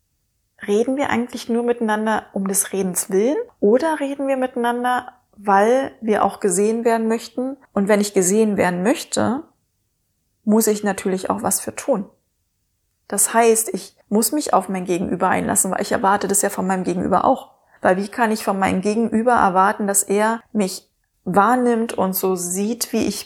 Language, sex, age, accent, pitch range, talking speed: German, female, 20-39, German, 195-230 Hz, 175 wpm